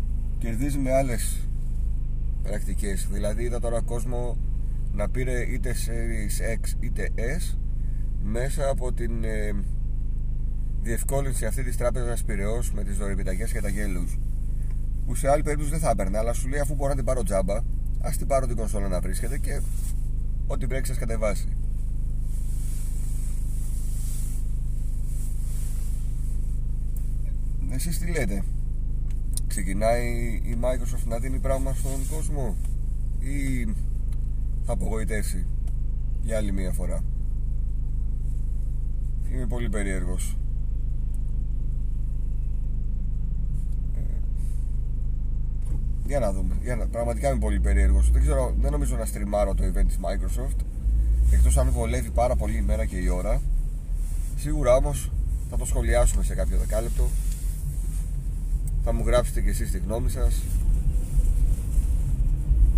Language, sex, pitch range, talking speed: Greek, male, 80-130 Hz, 115 wpm